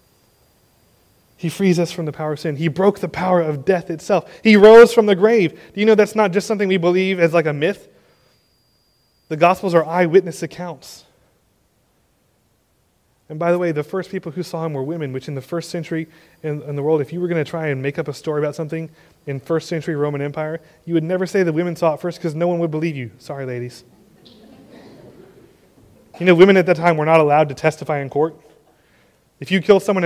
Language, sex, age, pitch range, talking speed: English, male, 30-49, 145-180 Hz, 220 wpm